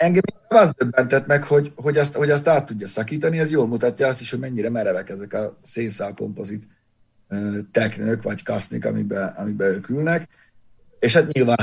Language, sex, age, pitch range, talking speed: Hungarian, male, 30-49, 105-125 Hz, 175 wpm